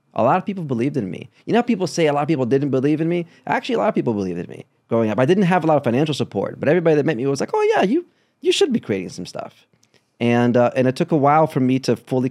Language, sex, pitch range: English, male, 115-145 Hz